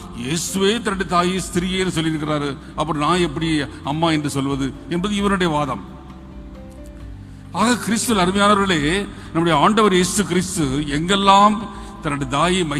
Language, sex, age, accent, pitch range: Tamil, male, 50-69, native, 150-200 Hz